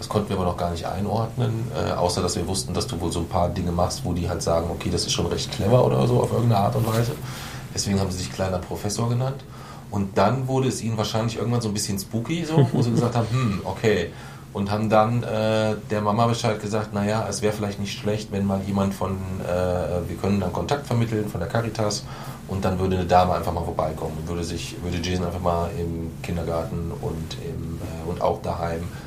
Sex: male